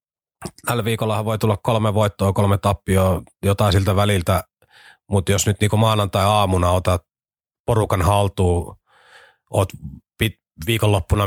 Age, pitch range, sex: 30-49, 90-105 Hz, male